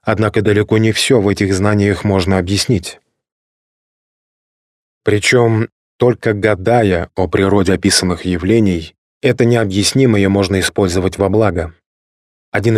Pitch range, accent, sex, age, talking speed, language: 90-105 Hz, native, male, 20-39, 110 wpm, Russian